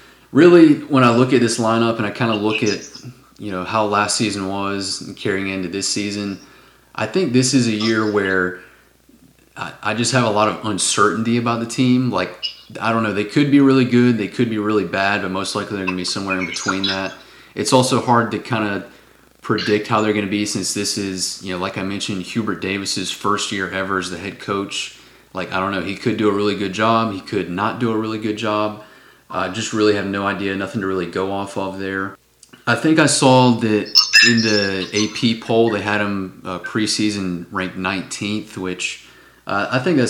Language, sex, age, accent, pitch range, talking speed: English, male, 30-49, American, 95-115 Hz, 225 wpm